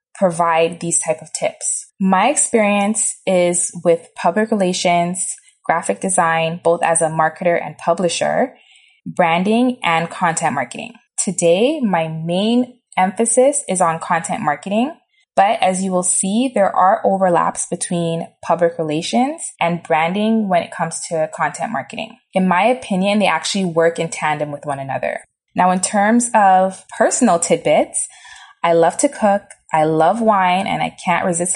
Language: English